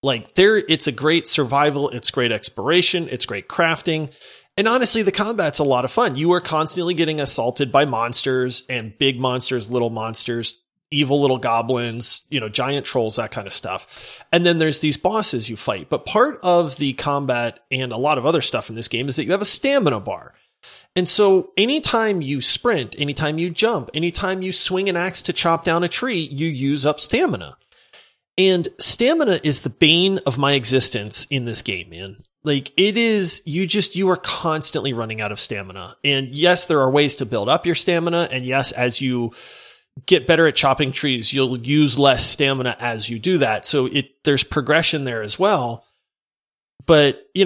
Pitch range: 125-175 Hz